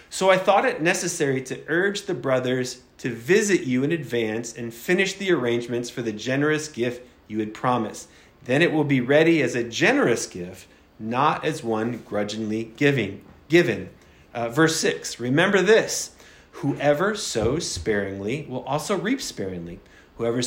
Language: English